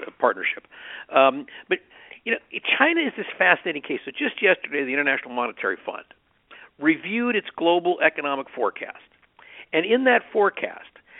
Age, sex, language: 50-69, male, English